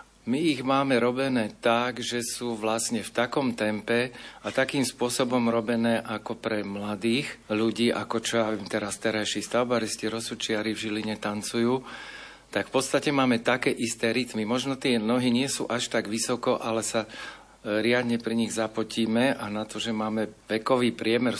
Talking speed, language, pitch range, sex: 165 wpm, Slovak, 110-125 Hz, male